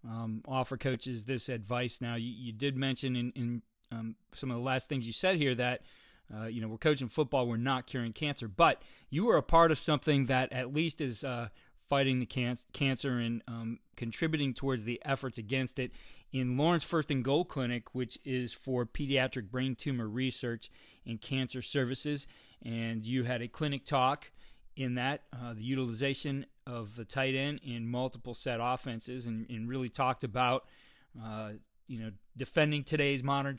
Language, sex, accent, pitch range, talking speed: English, male, American, 120-135 Hz, 180 wpm